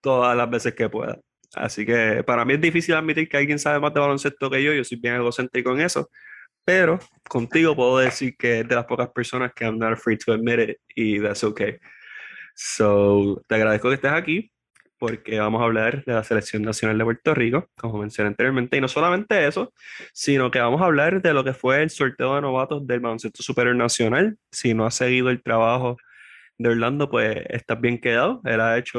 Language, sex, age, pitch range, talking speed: Spanish, male, 20-39, 115-150 Hz, 210 wpm